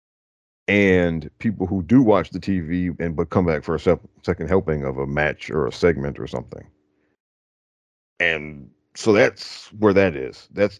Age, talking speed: 40-59, 165 wpm